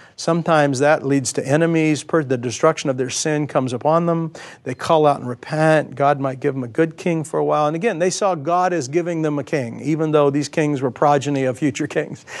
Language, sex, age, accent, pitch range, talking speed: English, male, 50-69, American, 155-235 Hz, 225 wpm